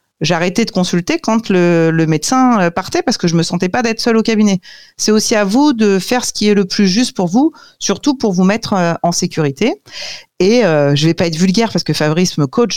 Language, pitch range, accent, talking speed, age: French, 160-225 Hz, French, 235 wpm, 40-59